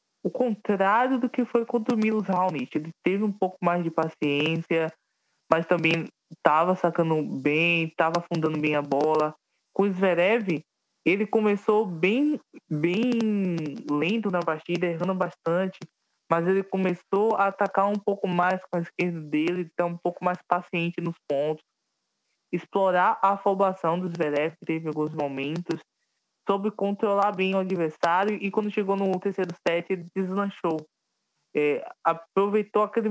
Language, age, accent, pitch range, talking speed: Portuguese, 20-39, Brazilian, 160-195 Hz, 145 wpm